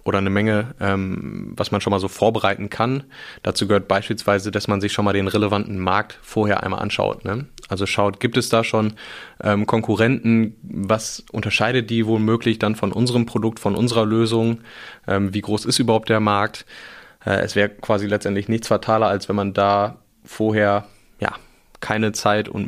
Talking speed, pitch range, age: 180 wpm, 100-115 Hz, 20-39